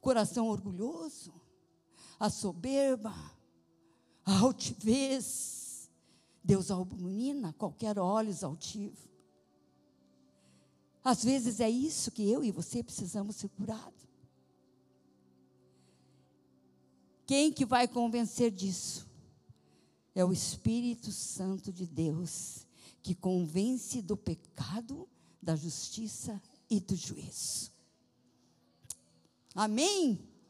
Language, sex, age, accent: Portuguese, female, 50-69, Brazilian